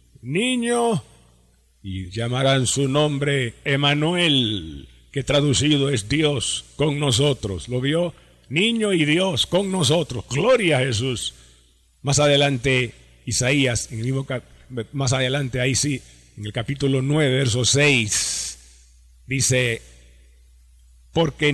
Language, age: Spanish, 50-69